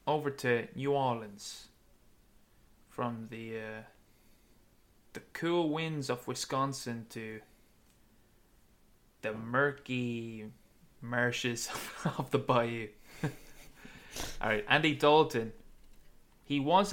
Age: 20-39